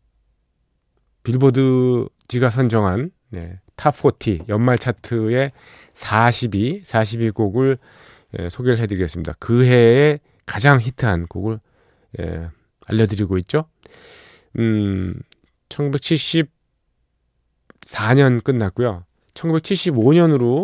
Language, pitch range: Korean, 100-135 Hz